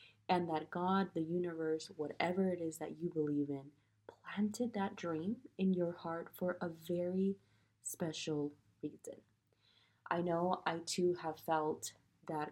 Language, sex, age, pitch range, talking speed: English, female, 20-39, 145-180 Hz, 145 wpm